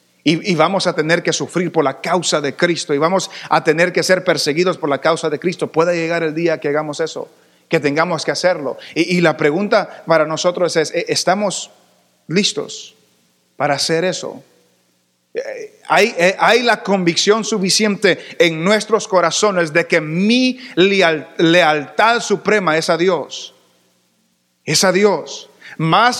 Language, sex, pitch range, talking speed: English, male, 145-190 Hz, 155 wpm